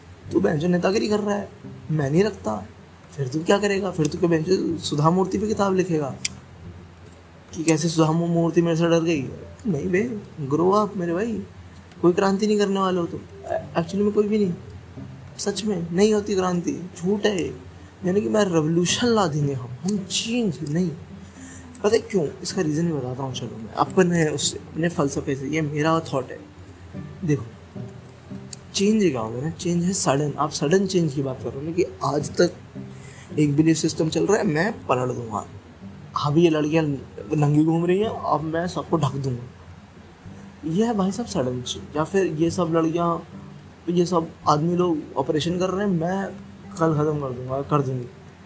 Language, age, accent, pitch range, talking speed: Hindi, 20-39, native, 125-185 Hz, 175 wpm